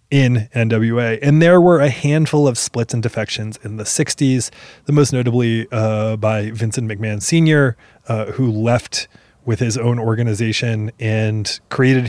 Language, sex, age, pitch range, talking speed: English, male, 20-39, 115-145 Hz, 155 wpm